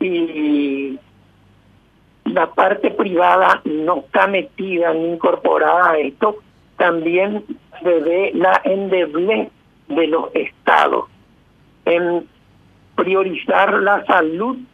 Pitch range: 170-235 Hz